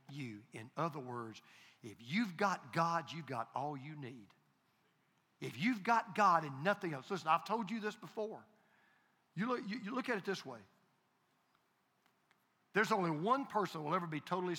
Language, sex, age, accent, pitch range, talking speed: English, male, 50-69, American, 165-235 Hz, 175 wpm